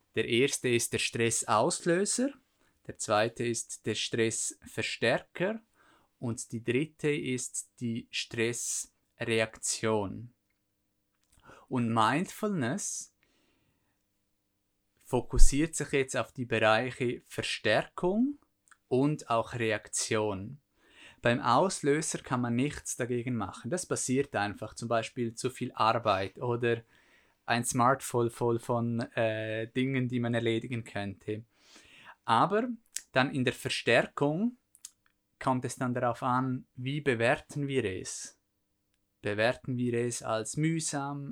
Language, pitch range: German, 110-140 Hz